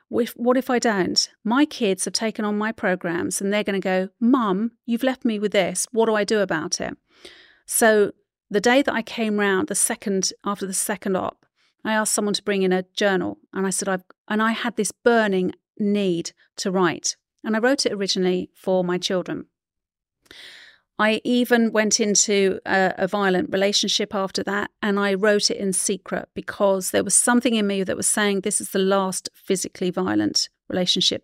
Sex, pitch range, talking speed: female, 195-230 Hz, 195 wpm